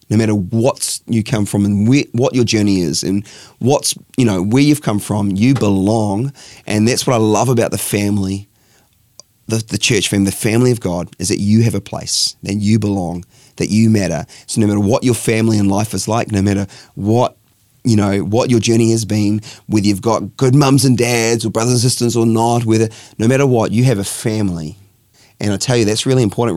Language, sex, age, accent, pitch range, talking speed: English, male, 30-49, Australian, 100-115 Hz, 220 wpm